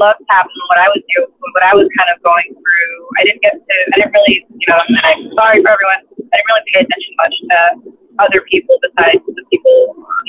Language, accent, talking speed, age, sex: English, American, 220 wpm, 20-39, female